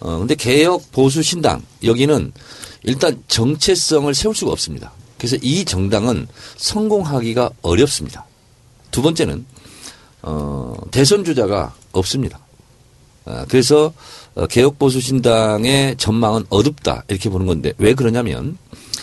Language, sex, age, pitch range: Korean, male, 40-59, 120-185 Hz